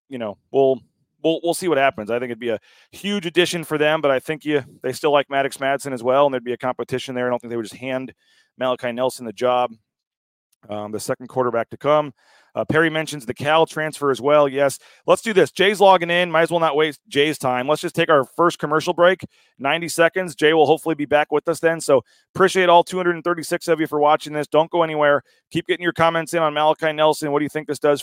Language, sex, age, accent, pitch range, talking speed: English, male, 30-49, American, 145-210 Hz, 250 wpm